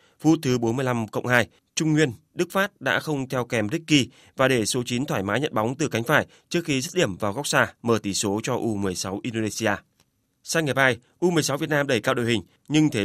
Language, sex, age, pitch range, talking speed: Vietnamese, male, 20-39, 115-150 Hz, 225 wpm